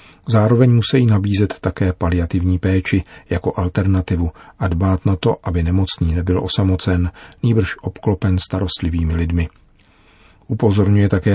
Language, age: Czech, 40-59